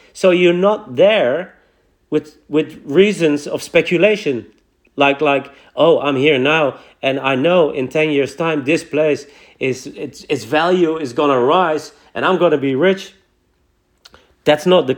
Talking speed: 155 wpm